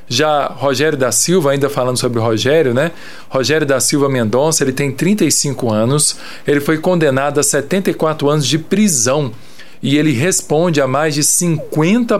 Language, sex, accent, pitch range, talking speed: Portuguese, male, Brazilian, 130-160 Hz, 160 wpm